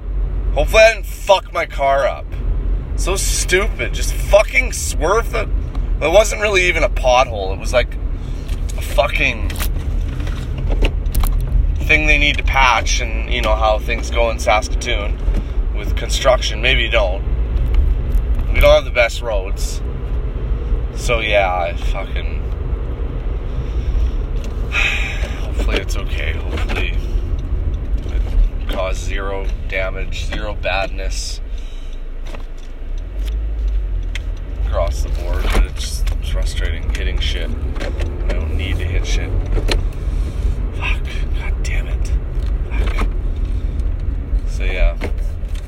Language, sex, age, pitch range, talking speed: English, male, 30-49, 70-85 Hz, 110 wpm